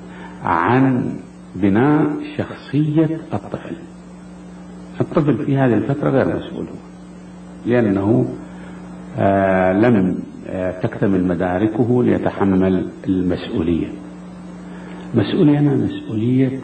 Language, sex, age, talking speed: Arabic, male, 50-69, 70 wpm